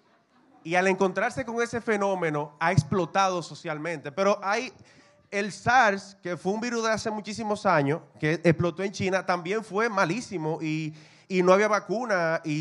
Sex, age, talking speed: male, 30-49, 160 wpm